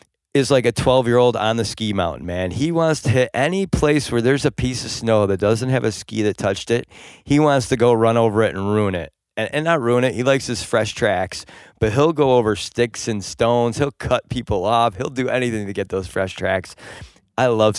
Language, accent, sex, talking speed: English, American, male, 235 wpm